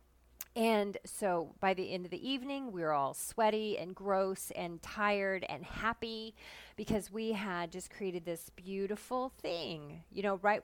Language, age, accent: English, 30-49, American